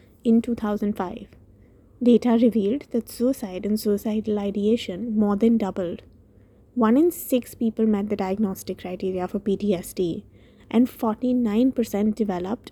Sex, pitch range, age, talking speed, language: female, 200-240 Hz, 20-39, 120 wpm, English